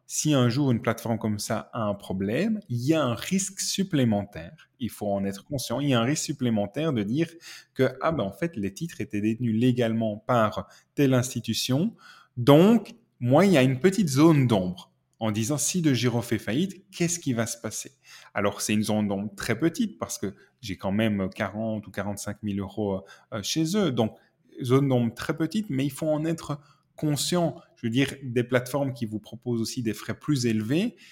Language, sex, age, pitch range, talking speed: French, male, 20-39, 110-150 Hz, 205 wpm